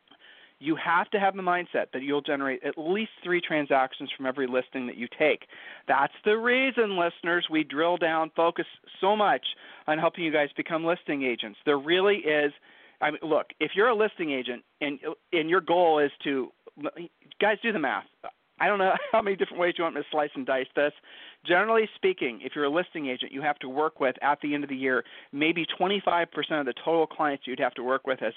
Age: 40-59